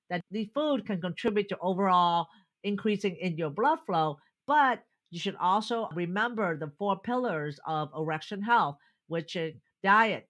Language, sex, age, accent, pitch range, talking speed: English, female, 50-69, American, 165-215 Hz, 150 wpm